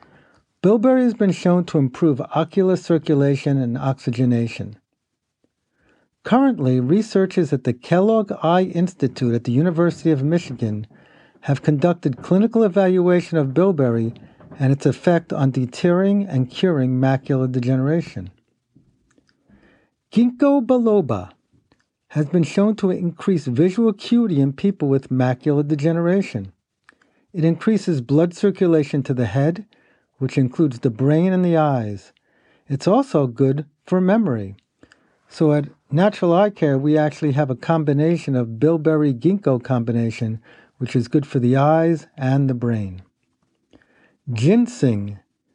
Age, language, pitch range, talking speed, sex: 50-69, English, 130-180 Hz, 125 wpm, male